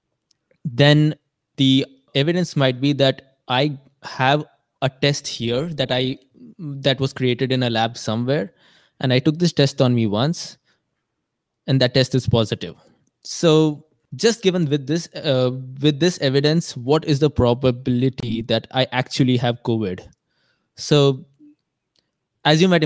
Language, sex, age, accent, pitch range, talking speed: English, male, 20-39, Indian, 125-150 Hz, 145 wpm